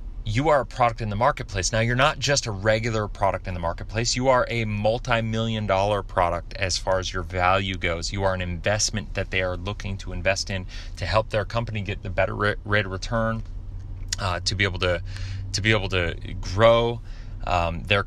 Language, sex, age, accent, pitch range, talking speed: English, male, 30-49, American, 100-115 Hz, 195 wpm